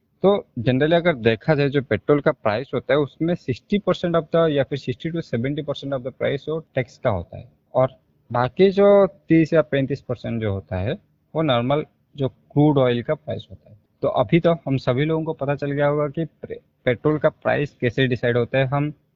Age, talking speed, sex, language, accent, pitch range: 20-39, 215 wpm, male, Hindi, native, 115-155 Hz